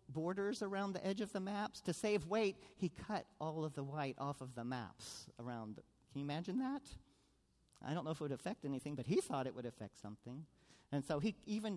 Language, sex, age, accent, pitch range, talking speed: English, male, 50-69, American, 130-180 Hz, 225 wpm